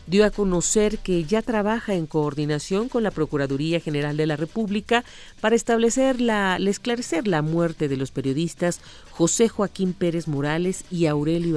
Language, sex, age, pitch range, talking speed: Spanish, female, 40-59, 155-205 Hz, 150 wpm